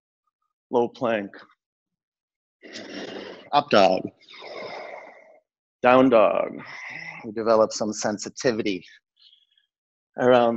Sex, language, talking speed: male, English, 60 wpm